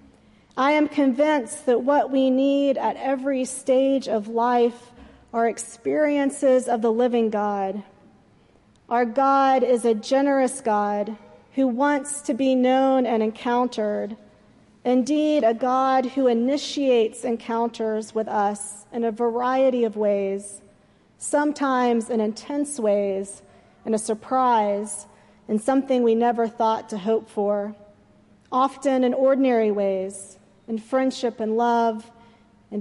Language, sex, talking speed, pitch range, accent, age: English, female, 125 wpm, 215-260 Hz, American, 40-59